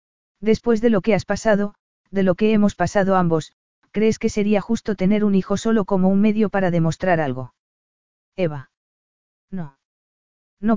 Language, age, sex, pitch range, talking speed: Spanish, 40-59, female, 180-215 Hz, 160 wpm